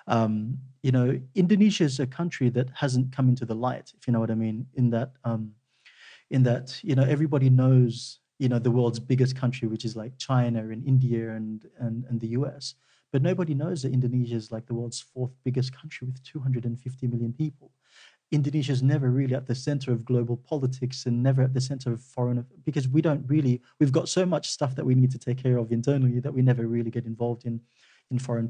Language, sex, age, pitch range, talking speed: English, male, 30-49, 120-135 Hz, 220 wpm